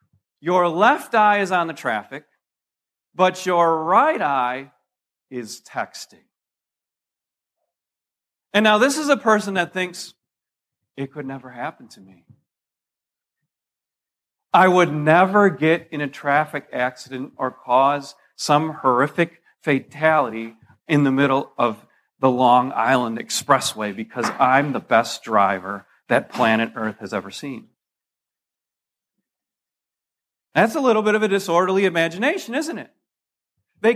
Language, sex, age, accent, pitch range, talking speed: English, male, 40-59, American, 145-220 Hz, 125 wpm